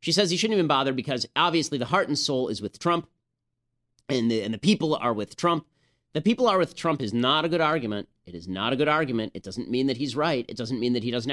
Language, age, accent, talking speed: English, 30-49, American, 270 wpm